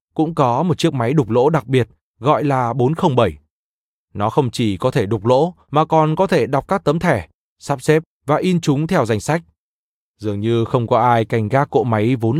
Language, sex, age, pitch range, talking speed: Vietnamese, male, 20-39, 115-160 Hz, 220 wpm